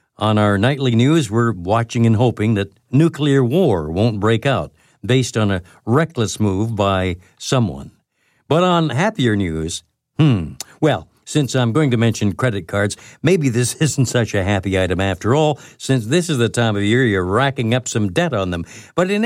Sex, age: male, 60-79